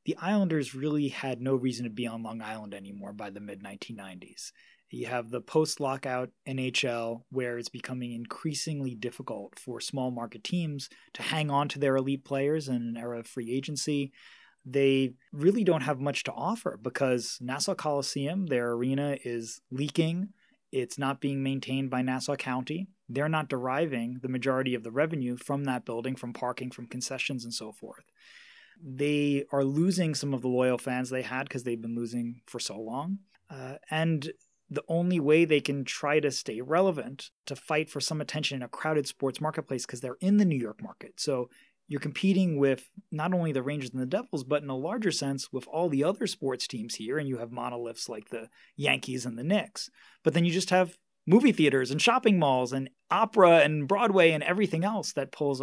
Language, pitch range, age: English, 125-155 Hz, 20-39